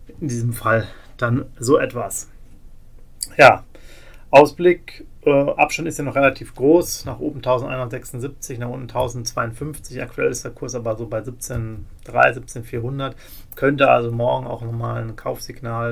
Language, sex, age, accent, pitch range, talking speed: German, male, 40-59, German, 110-125 Hz, 140 wpm